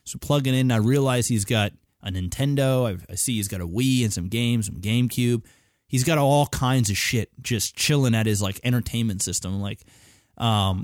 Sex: male